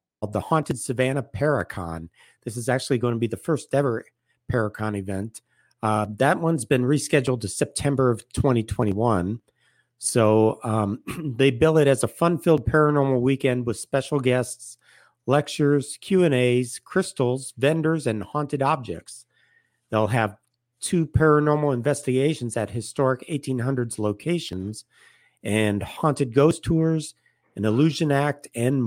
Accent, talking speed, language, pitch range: American, 130 wpm, English, 110-140 Hz